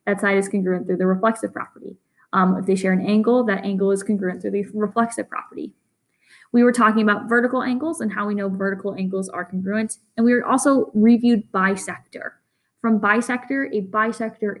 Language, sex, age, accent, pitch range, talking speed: English, female, 10-29, American, 195-235 Hz, 190 wpm